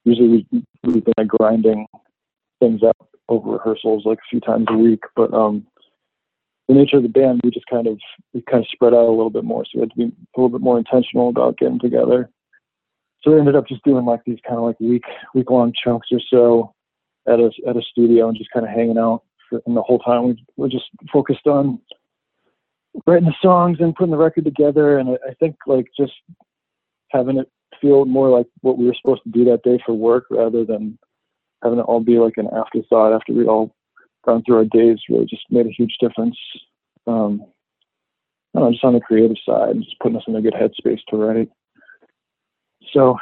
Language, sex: English, male